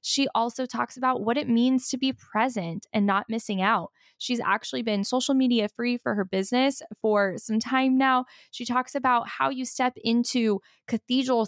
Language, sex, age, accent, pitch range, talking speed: English, female, 10-29, American, 190-250 Hz, 185 wpm